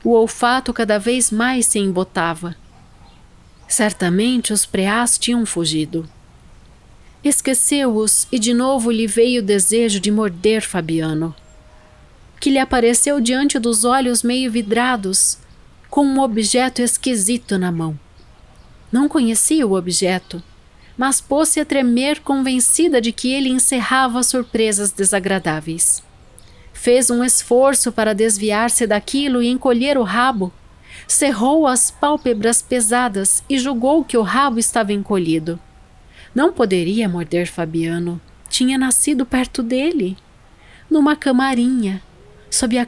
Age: 40-59